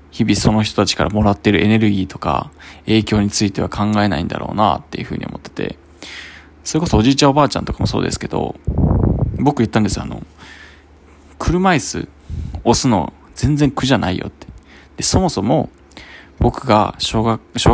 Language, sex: Japanese, male